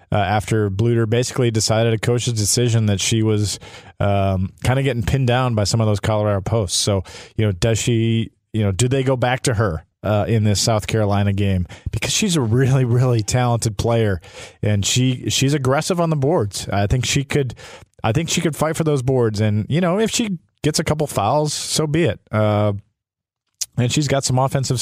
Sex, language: male, English